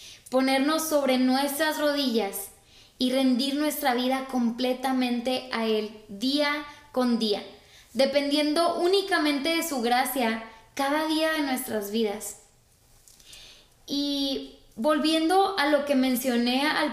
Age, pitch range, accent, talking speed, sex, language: 20-39, 235-280 Hz, Mexican, 110 wpm, female, Spanish